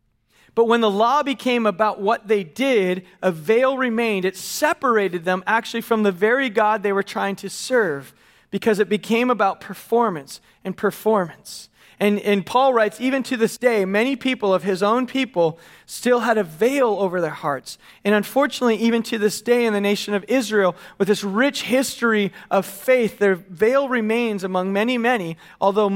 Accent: American